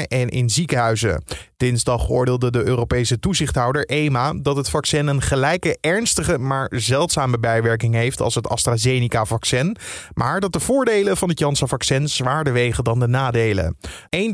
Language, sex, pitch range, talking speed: Dutch, male, 120-170 Hz, 145 wpm